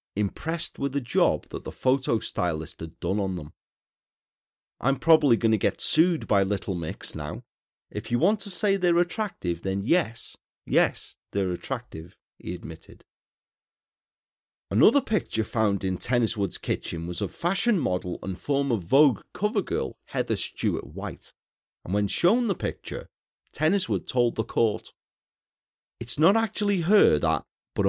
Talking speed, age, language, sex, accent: 150 wpm, 40-59, English, male, British